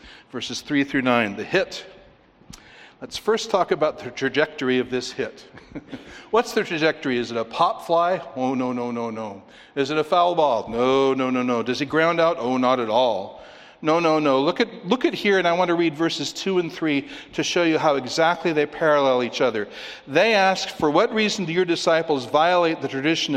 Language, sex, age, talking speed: English, male, 60-79, 210 wpm